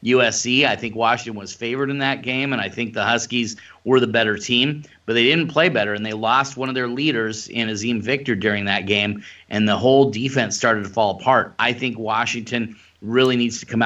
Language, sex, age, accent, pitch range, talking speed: English, male, 30-49, American, 110-135 Hz, 220 wpm